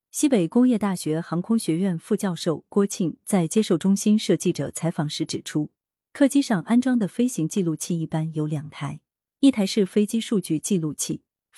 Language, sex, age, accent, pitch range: Chinese, female, 30-49, native, 160-220 Hz